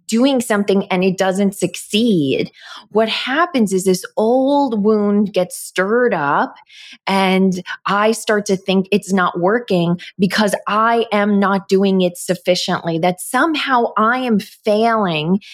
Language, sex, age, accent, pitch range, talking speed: English, female, 20-39, American, 180-215 Hz, 135 wpm